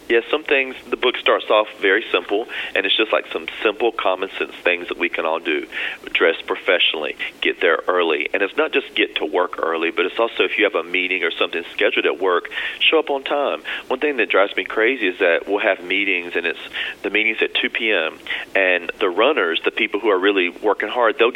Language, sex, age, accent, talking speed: English, male, 40-59, American, 230 wpm